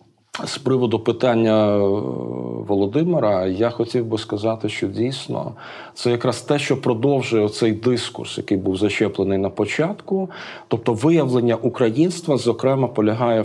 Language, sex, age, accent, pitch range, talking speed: Ukrainian, male, 40-59, native, 110-130 Hz, 120 wpm